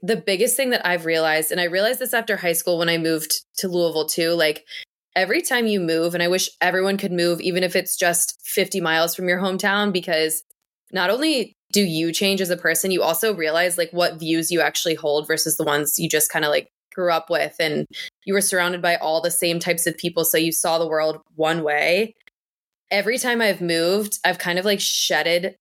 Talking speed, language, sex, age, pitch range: 225 wpm, English, female, 20-39, 160-190 Hz